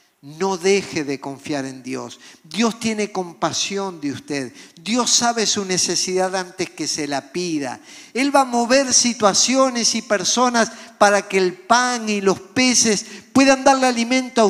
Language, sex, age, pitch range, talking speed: Spanish, male, 50-69, 175-255 Hz, 155 wpm